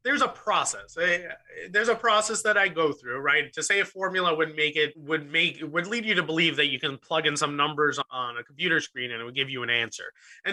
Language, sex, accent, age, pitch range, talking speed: English, male, American, 30-49, 150-195 Hz, 255 wpm